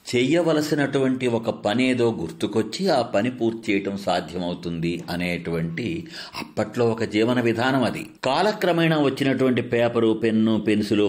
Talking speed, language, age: 140 wpm, English, 50-69